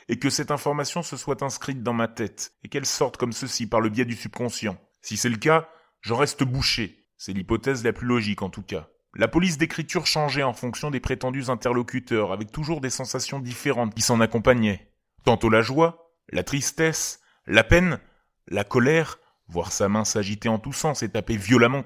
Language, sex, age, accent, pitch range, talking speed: French, male, 30-49, French, 115-150 Hz, 195 wpm